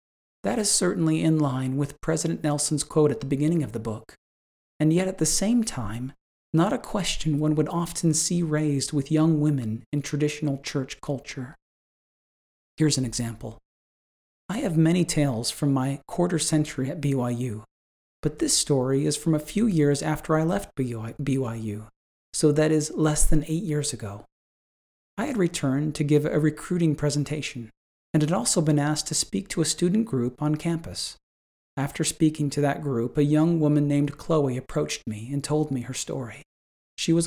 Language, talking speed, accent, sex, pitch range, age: English, 175 wpm, American, male, 130-160 Hz, 40-59